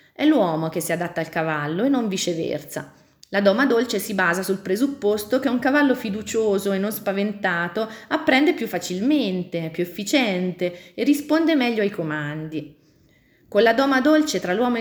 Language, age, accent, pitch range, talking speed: Italian, 30-49, native, 175-225 Hz, 165 wpm